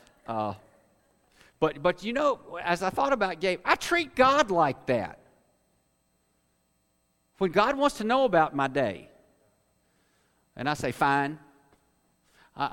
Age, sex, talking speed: 50-69, male, 130 wpm